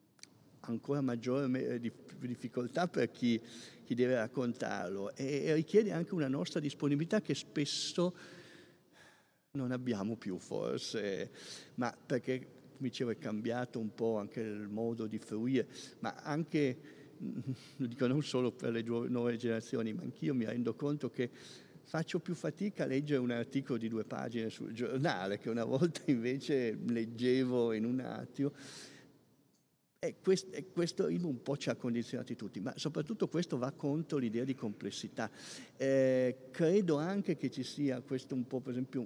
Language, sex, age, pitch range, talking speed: Italian, male, 50-69, 115-145 Hz, 155 wpm